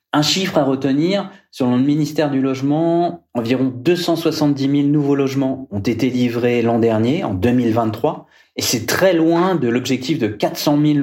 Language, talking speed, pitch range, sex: French, 165 wpm, 115-145 Hz, male